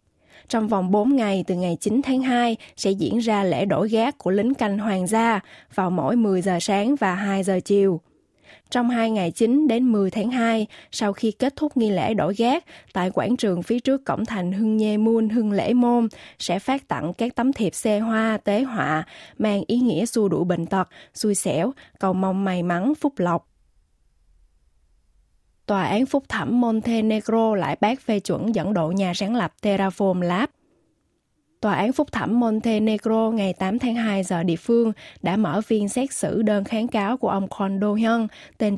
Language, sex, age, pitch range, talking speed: Vietnamese, female, 20-39, 190-230 Hz, 190 wpm